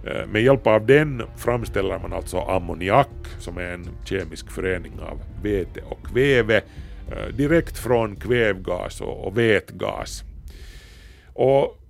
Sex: male